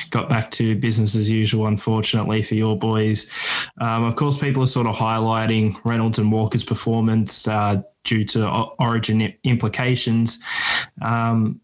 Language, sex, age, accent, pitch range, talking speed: English, male, 10-29, Australian, 110-125 Hz, 145 wpm